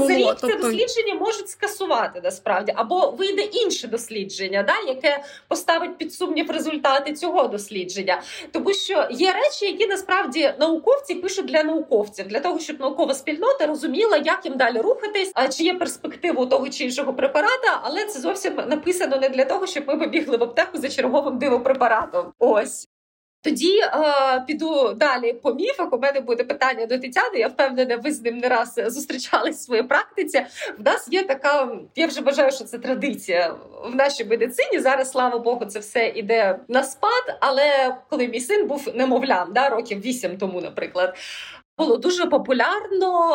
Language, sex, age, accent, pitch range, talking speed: Ukrainian, female, 20-39, native, 255-360 Hz, 165 wpm